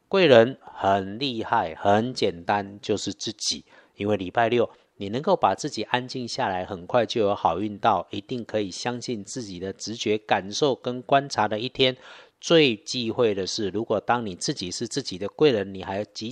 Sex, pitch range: male, 100-130 Hz